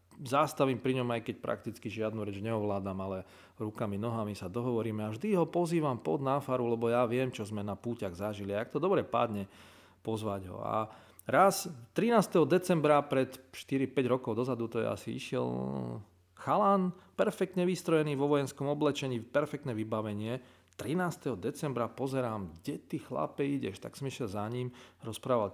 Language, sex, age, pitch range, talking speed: Slovak, male, 40-59, 105-135 Hz, 160 wpm